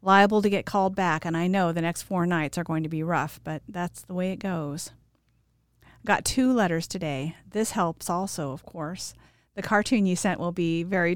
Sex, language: female, English